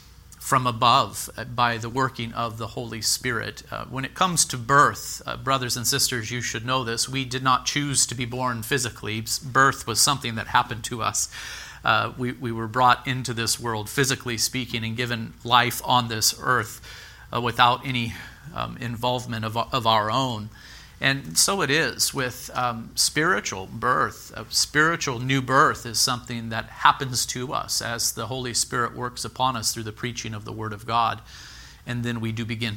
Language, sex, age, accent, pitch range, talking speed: English, male, 40-59, American, 110-130 Hz, 185 wpm